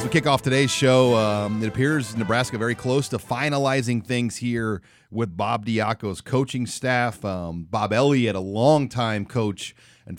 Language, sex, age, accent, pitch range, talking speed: English, male, 30-49, American, 100-120 Hz, 165 wpm